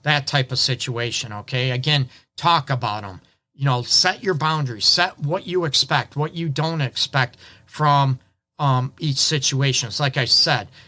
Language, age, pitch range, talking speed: English, 50-69, 135-160 Hz, 165 wpm